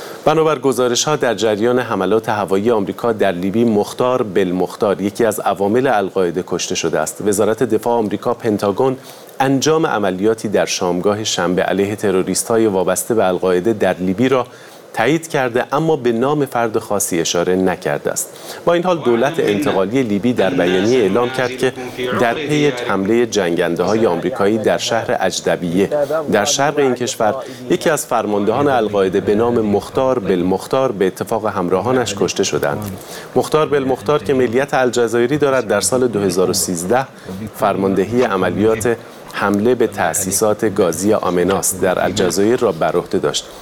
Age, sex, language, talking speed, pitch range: 40-59, male, Persian, 145 wpm, 95-130 Hz